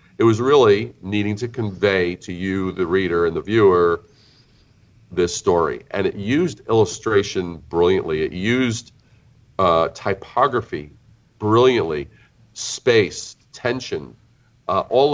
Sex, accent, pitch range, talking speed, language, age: male, American, 90-115 Hz, 115 wpm, English, 40-59